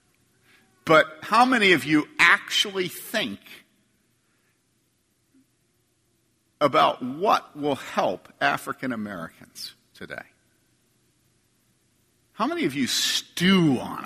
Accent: American